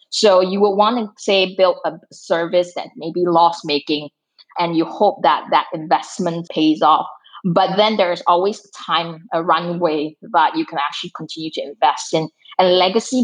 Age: 20-39